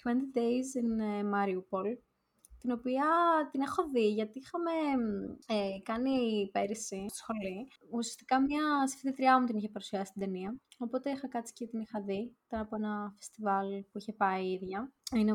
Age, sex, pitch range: 20-39, female, 205-255 Hz